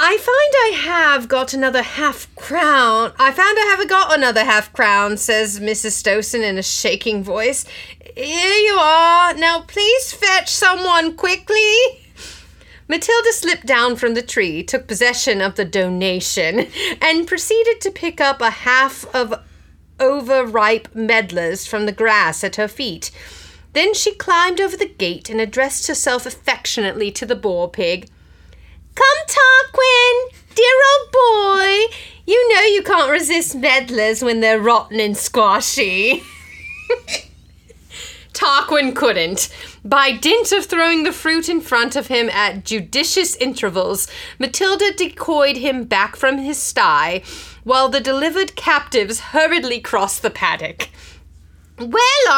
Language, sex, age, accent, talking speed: English, female, 30-49, American, 135 wpm